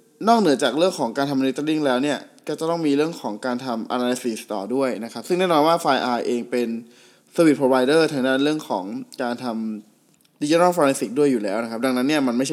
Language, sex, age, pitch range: Thai, male, 20-39, 120-145 Hz